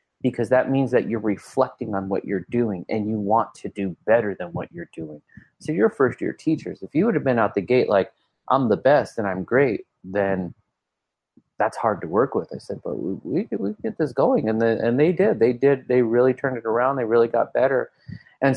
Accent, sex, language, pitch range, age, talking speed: American, male, English, 100-130 Hz, 30-49, 230 wpm